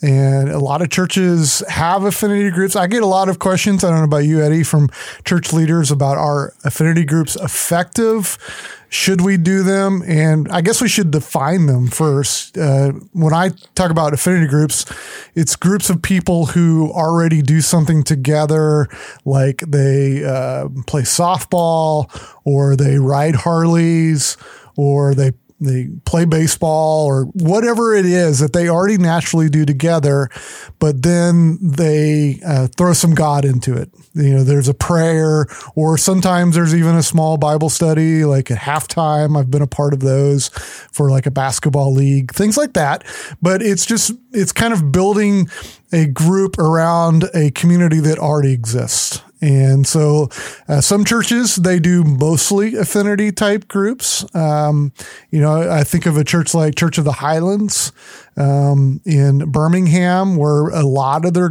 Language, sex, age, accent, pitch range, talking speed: English, male, 30-49, American, 145-180 Hz, 160 wpm